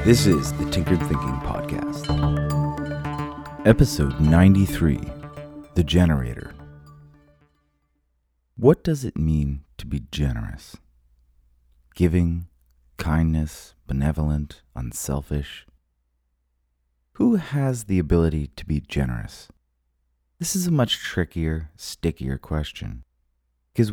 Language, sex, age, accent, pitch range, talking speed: English, male, 30-49, American, 65-90 Hz, 90 wpm